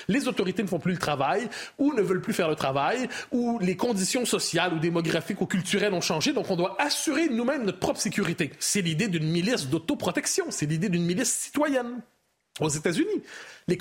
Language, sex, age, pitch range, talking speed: French, male, 30-49, 170-250 Hz, 195 wpm